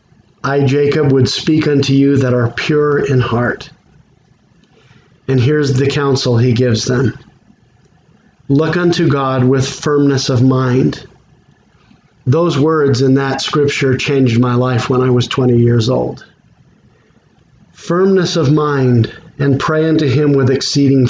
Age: 40-59